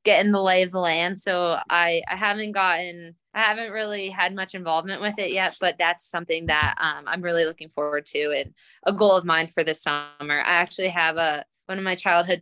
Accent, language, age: American, English, 20-39